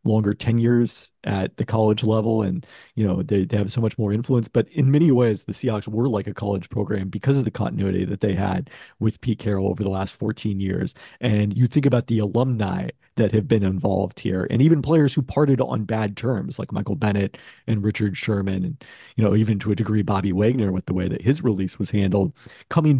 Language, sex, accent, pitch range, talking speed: English, male, American, 100-125 Hz, 225 wpm